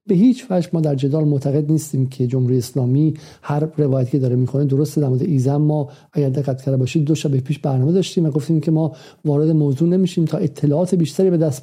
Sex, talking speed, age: male, 210 wpm, 50-69